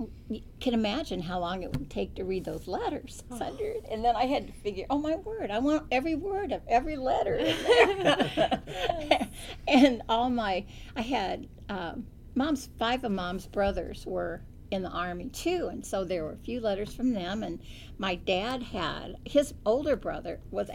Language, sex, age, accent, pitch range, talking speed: English, female, 50-69, American, 185-255 Hz, 180 wpm